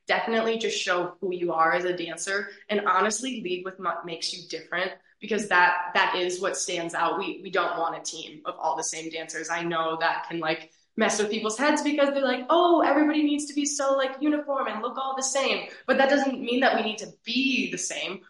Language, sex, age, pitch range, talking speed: English, female, 20-39, 175-225 Hz, 235 wpm